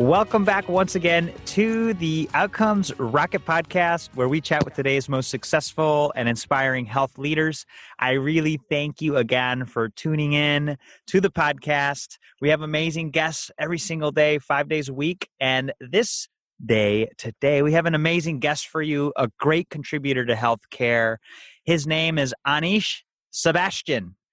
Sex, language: male, English